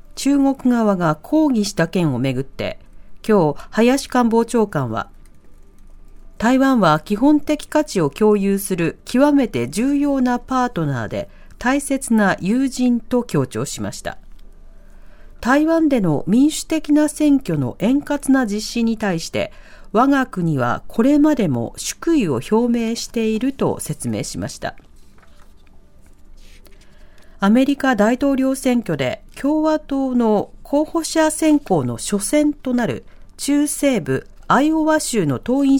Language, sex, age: Japanese, female, 40-59